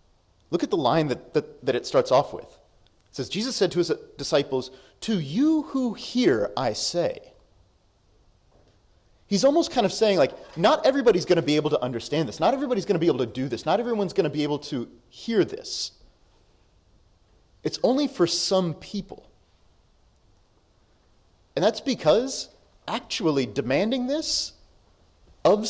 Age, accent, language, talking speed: 30-49, American, English, 160 wpm